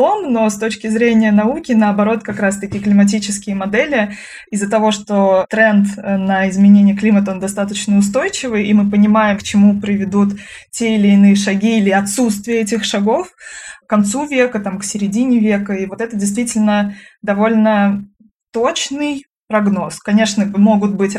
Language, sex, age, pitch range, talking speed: Russian, female, 20-39, 195-220 Hz, 145 wpm